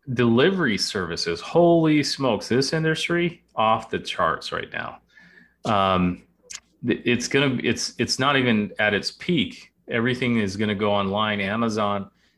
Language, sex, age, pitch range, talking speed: English, male, 30-49, 95-115 Hz, 130 wpm